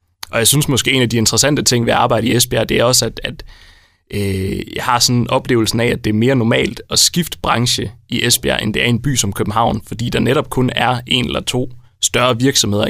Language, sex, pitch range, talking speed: Danish, male, 110-125 Hz, 255 wpm